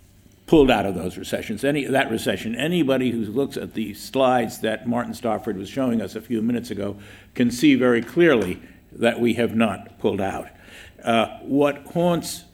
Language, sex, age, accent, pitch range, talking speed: English, male, 60-79, American, 110-135 Hz, 175 wpm